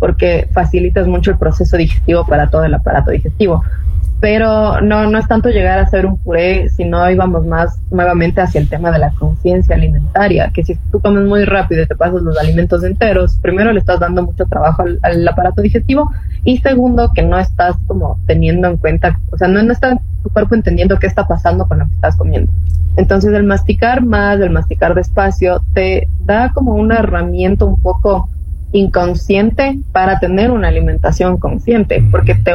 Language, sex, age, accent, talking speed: Spanish, female, 20-39, Mexican, 185 wpm